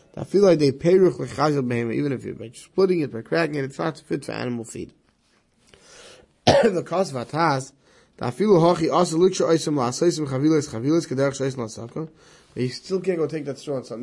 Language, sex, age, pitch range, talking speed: English, male, 20-39, 120-155 Hz, 160 wpm